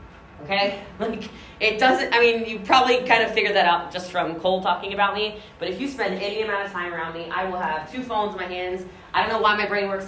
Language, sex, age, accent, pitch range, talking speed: English, female, 20-39, American, 170-215 Hz, 260 wpm